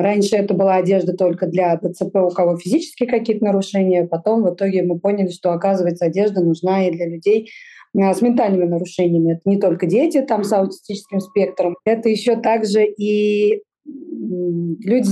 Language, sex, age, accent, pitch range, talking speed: Russian, female, 20-39, native, 180-220 Hz, 160 wpm